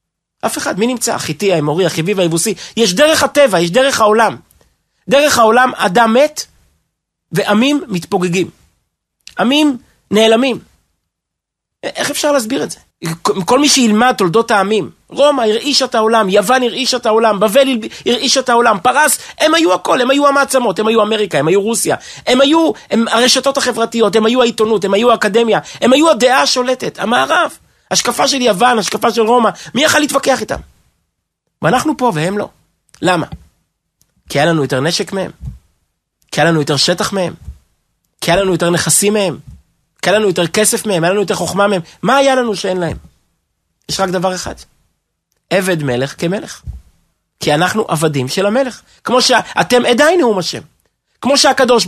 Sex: male